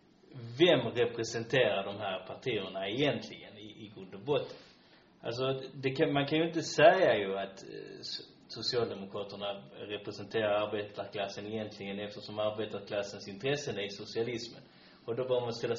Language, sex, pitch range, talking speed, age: Swedish, male, 105-135 Hz, 135 wpm, 30-49